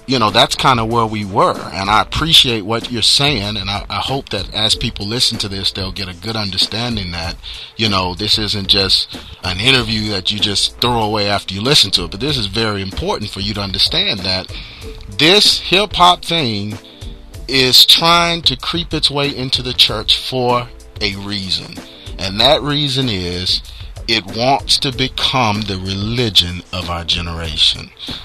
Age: 40-59